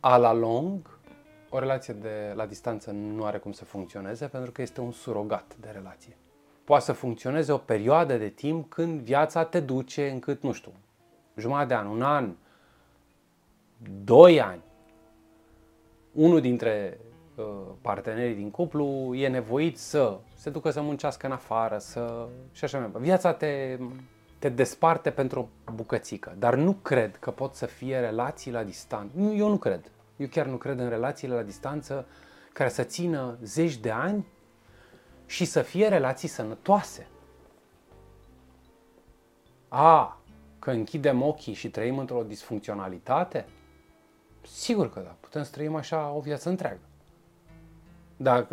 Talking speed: 145 wpm